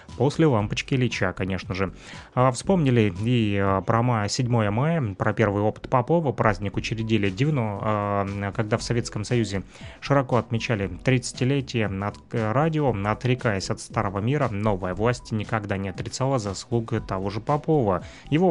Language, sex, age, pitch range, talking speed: Russian, male, 20-39, 105-130 Hz, 125 wpm